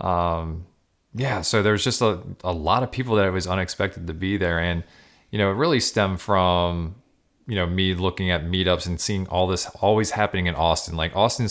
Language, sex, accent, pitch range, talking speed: English, male, American, 85-100 Hz, 210 wpm